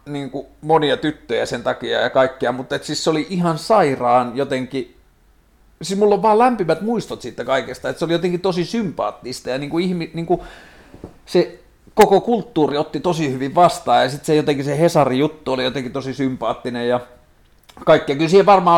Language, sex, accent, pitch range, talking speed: Finnish, male, native, 120-155 Hz, 180 wpm